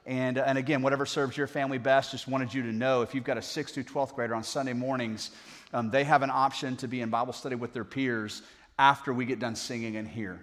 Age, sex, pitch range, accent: 30-49, male, 125-155 Hz, American